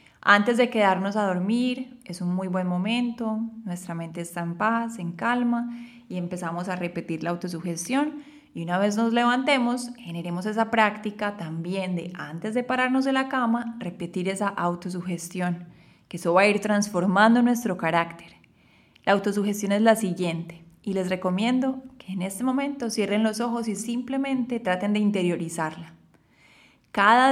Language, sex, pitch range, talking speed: Spanish, female, 180-245 Hz, 155 wpm